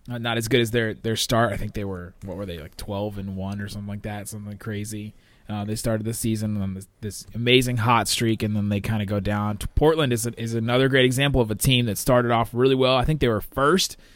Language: English